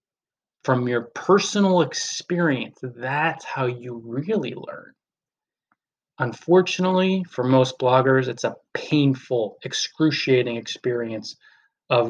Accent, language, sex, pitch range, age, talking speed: American, English, male, 115-135 Hz, 20-39, 95 wpm